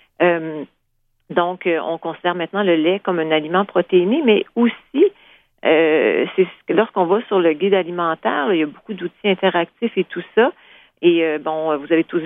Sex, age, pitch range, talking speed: female, 40-59, 165-195 Hz, 175 wpm